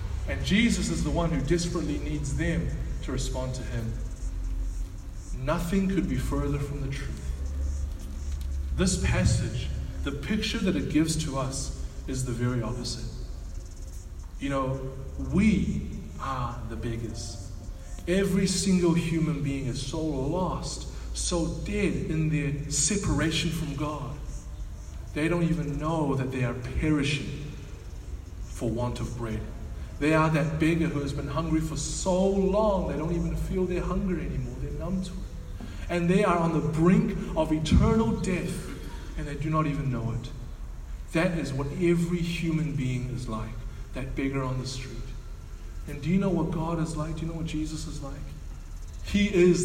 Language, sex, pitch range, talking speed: English, male, 100-165 Hz, 160 wpm